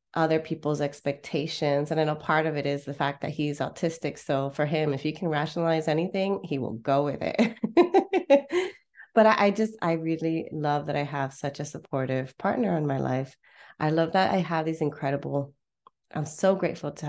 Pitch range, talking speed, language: 140-180 Hz, 195 wpm, English